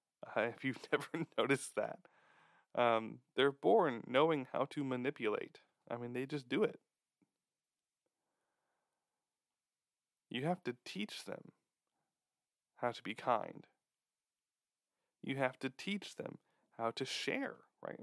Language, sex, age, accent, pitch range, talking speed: English, male, 10-29, American, 115-135 Hz, 125 wpm